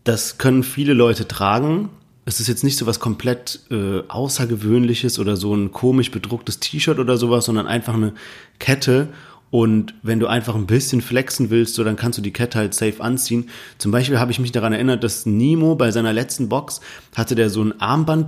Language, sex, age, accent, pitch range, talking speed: German, male, 30-49, German, 115-135 Hz, 200 wpm